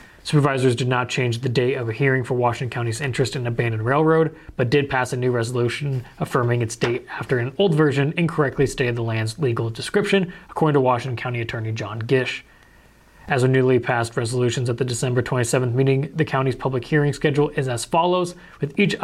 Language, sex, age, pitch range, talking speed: English, male, 20-39, 120-145 Hz, 195 wpm